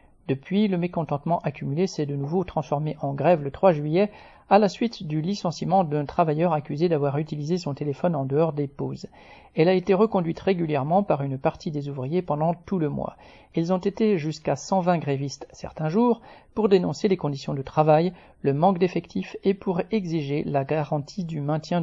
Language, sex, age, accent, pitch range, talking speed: French, male, 40-59, French, 145-185 Hz, 185 wpm